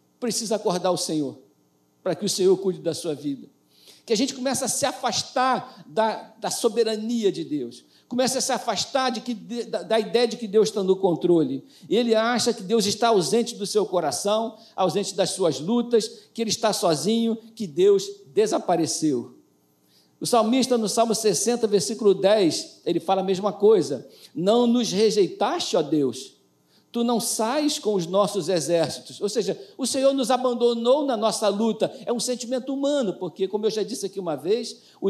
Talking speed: 180 wpm